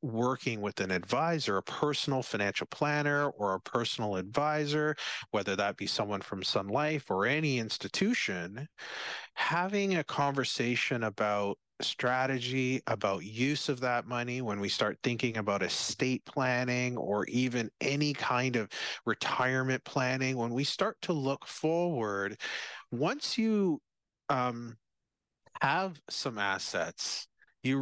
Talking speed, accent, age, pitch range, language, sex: 125 wpm, American, 40-59, 110-140 Hz, English, male